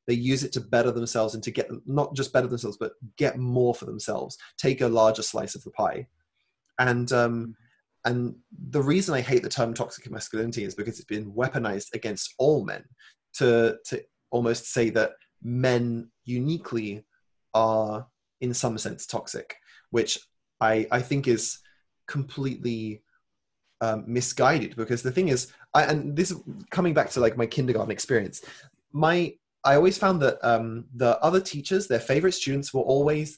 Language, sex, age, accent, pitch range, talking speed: English, male, 20-39, British, 115-150 Hz, 170 wpm